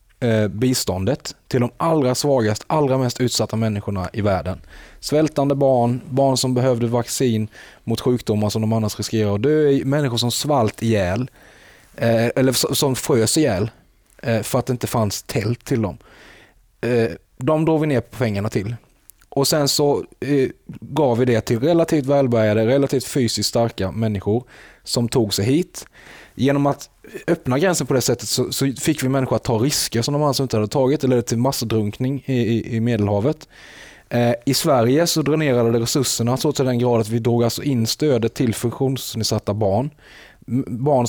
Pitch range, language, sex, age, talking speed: 110-135 Hz, Swedish, male, 30-49, 165 wpm